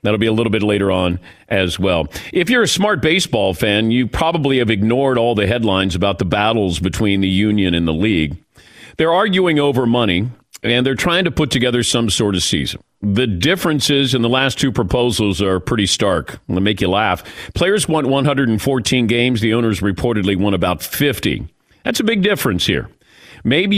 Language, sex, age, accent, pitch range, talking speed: English, male, 40-59, American, 105-140 Hz, 190 wpm